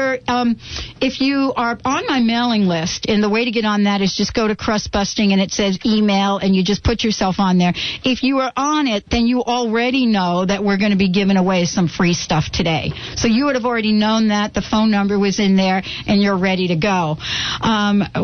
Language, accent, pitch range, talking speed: English, American, 195-235 Hz, 235 wpm